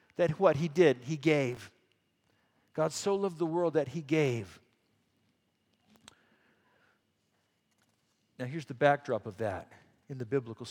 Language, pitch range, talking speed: English, 135-180 Hz, 130 wpm